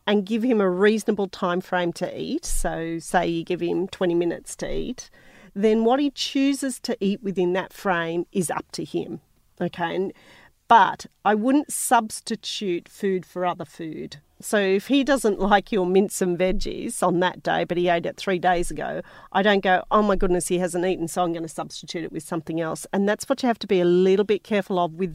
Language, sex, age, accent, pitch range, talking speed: English, female, 40-59, Australian, 170-205 Hz, 215 wpm